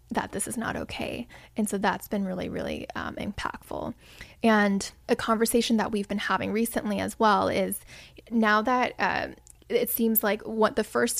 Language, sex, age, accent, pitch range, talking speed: English, female, 10-29, American, 205-230 Hz, 175 wpm